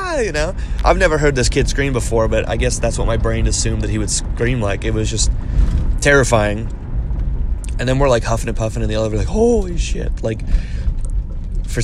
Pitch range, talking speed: 110-130 Hz, 210 wpm